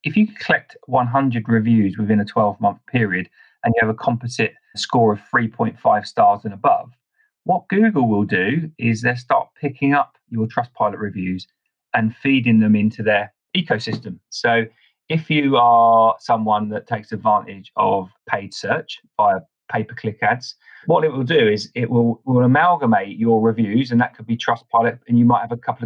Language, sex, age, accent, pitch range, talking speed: English, male, 40-59, British, 110-140 Hz, 170 wpm